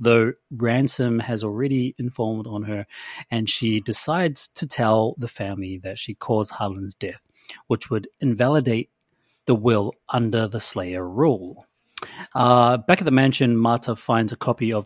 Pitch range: 110-135 Hz